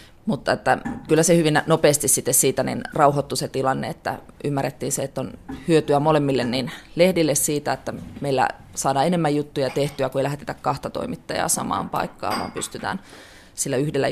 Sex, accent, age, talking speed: female, native, 20-39, 165 wpm